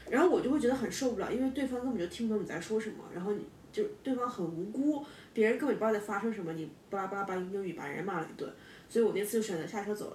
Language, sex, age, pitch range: Chinese, female, 10-29, 190-230 Hz